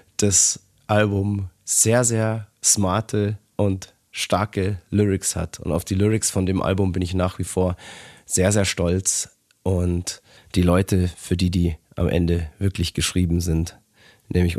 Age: 30-49